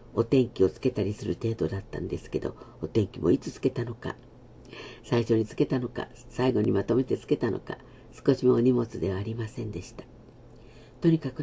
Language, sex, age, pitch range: Japanese, female, 50-69, 110-130 Hz